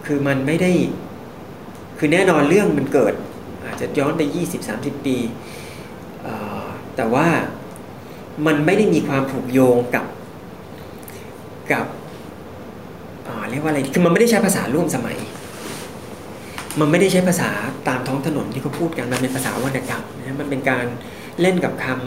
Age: 30-49